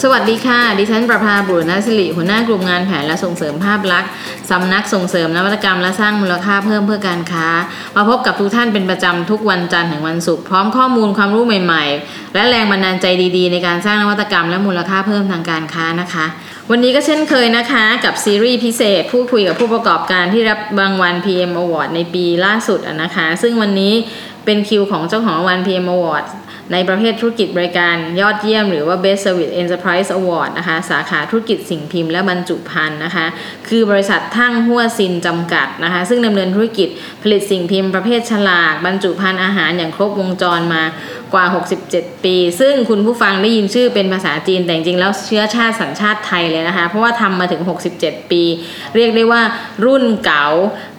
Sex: female